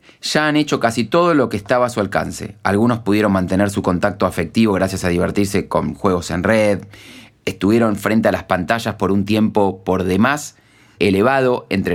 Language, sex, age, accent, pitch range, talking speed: Spanish, male, 30-49, Argentinian, 90-110 Hz, 180 wpm